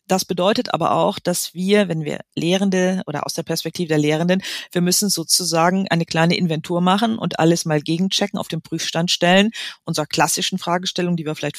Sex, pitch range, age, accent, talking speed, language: female, 160-185 Hz, 40-59, German, 185 wpm, German